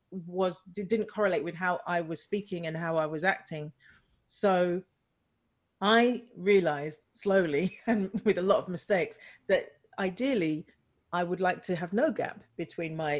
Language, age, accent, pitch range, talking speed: English, 40-59, British, 165-205 Hz, 155 wpm